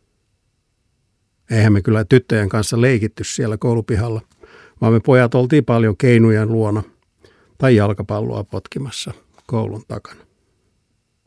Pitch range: 100-120 Hz